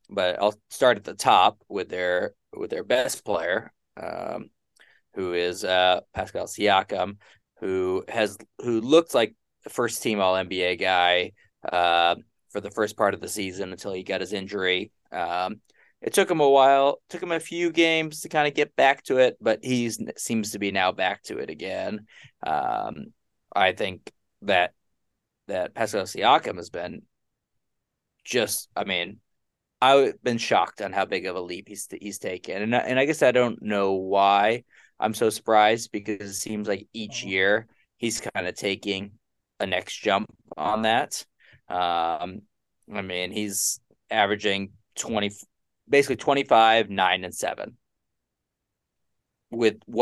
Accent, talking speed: American, 160 wpm